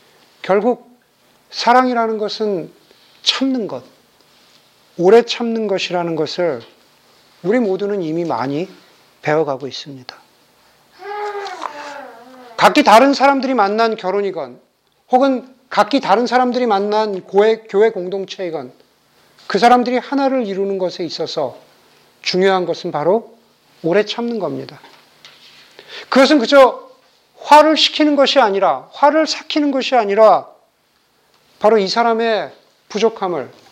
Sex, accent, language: male, native, Korean